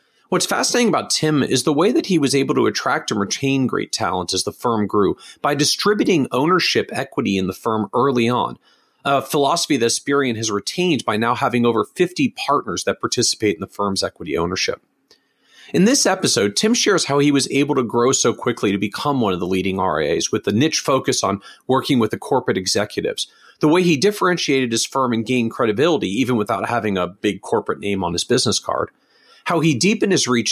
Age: 40-59